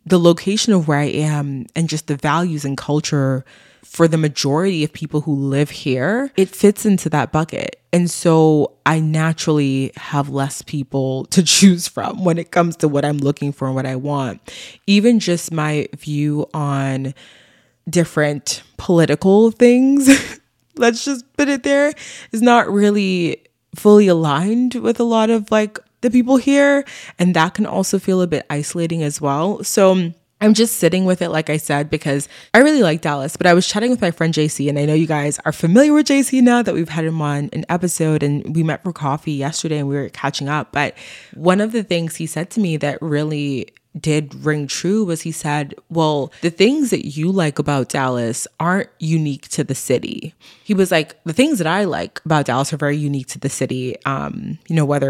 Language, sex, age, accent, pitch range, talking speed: English, female, 20-39, American, 145-190 Hz, 200 wpm